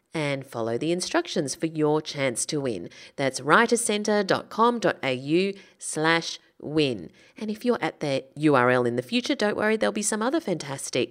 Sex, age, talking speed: female, 30-49, 155 wpm